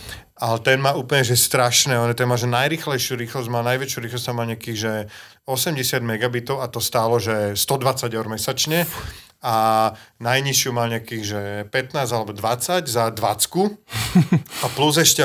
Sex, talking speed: male, 155 wpm